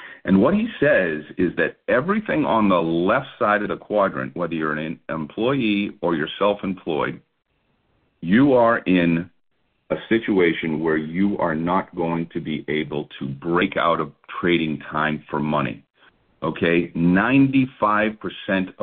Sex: male